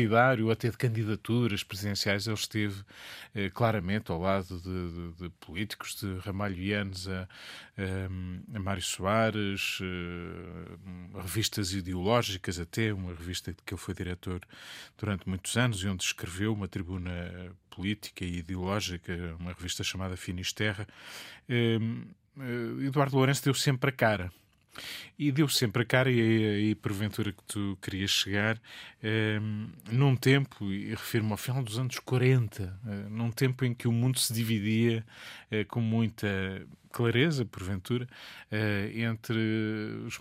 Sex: male